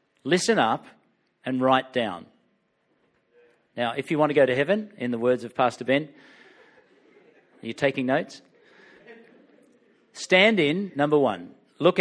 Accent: Australian